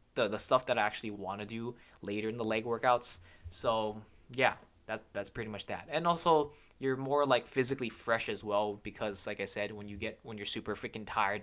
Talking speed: 220 wpm